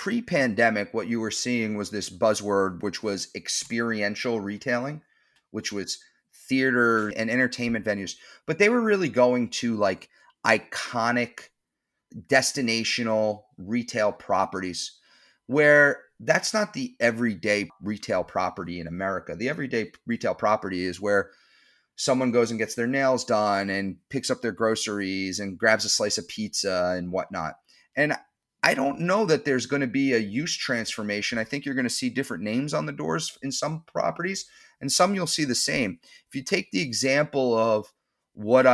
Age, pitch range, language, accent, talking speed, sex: 30-49, 105-130 Hz, English, American, 165 wpm, male